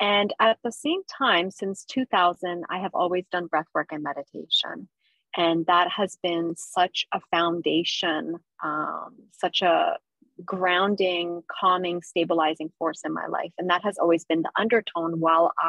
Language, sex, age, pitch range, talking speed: English, female, 30-49, 170-200 Hz, 150 wpm